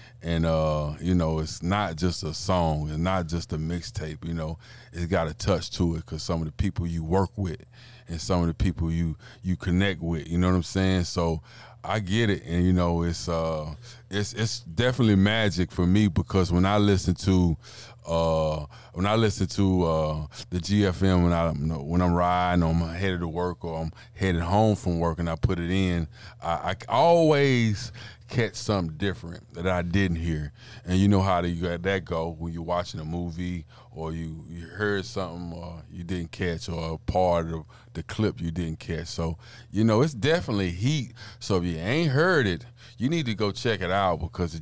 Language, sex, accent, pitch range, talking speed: English, male, American, 85-105 Hz, 210 wpm